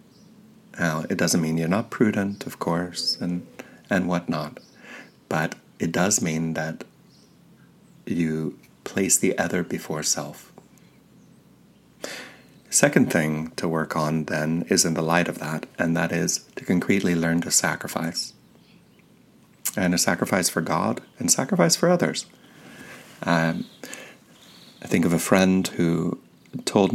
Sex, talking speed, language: male, 135 wpm, English